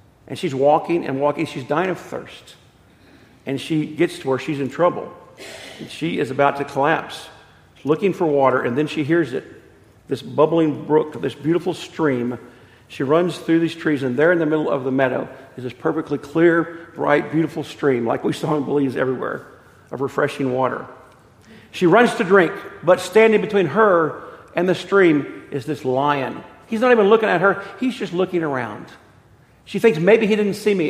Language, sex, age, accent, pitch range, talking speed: English, male, 50-69, American, 140-195 Hz, 190 wpm